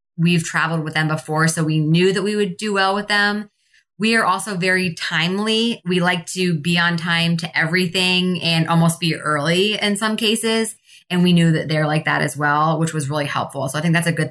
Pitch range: 155-190 Hz